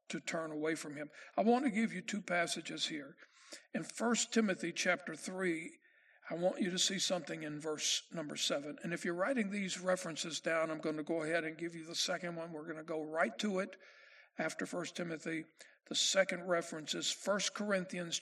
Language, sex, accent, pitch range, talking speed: English, male, American, 165-235 Hz, 205 wpm